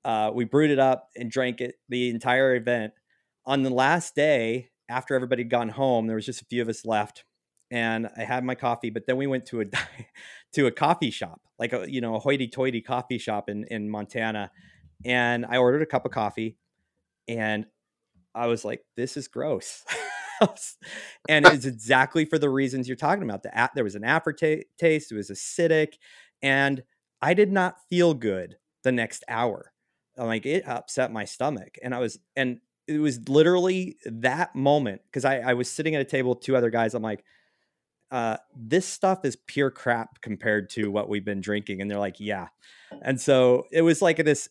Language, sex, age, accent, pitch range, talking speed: English, male, 30-49, American, 115-145 Hz, 195 wpm